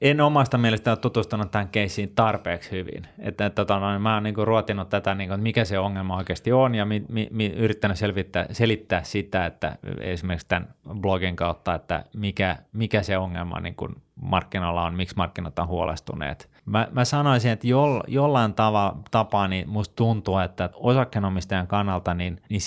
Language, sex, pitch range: Finnish, male, 95-110 Hz